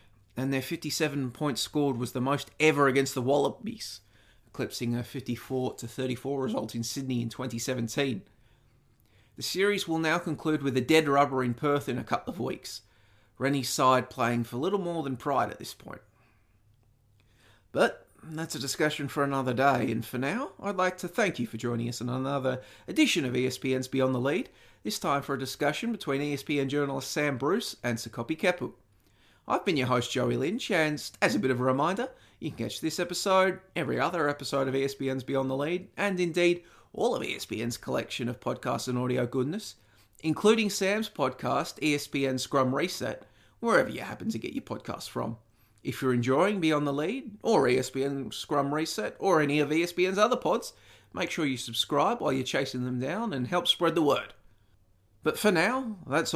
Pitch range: 120-155 Hz